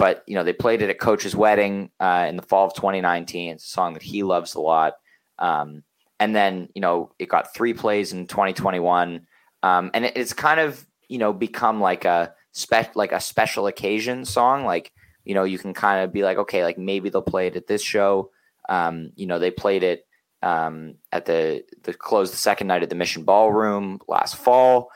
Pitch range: 85-105 Hz